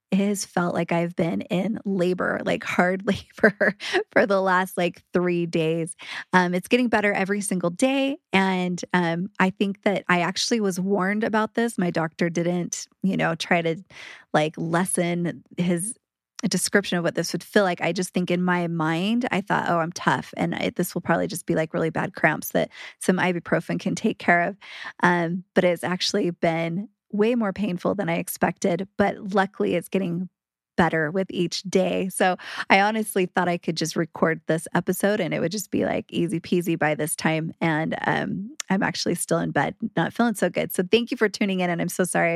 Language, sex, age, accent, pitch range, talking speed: English, female, 20-39, American, 175-200 Hz, 200 wpm